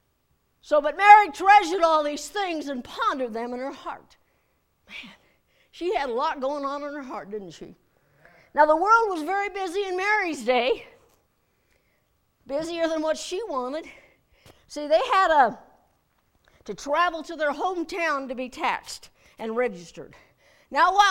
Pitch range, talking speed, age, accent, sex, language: 255-370 Hz, 155 wpm, 60-79, American, female, English